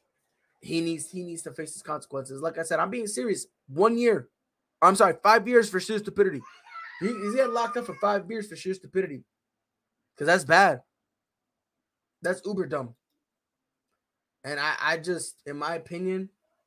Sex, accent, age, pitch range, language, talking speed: male, American, 20-39, 150-215 Hz, English, 170 wpm